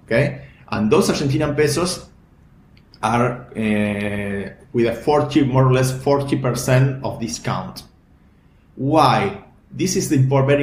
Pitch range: 110-140 Hz